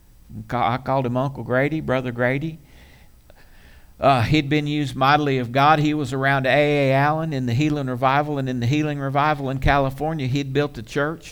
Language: English